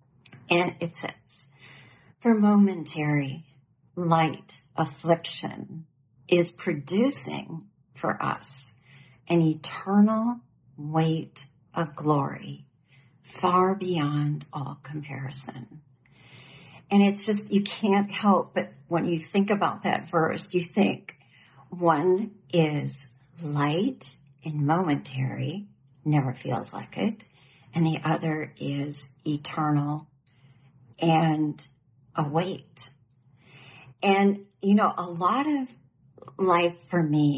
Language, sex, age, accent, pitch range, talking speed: English, female, 50-69, American, 135-170 Hz, 100 wpm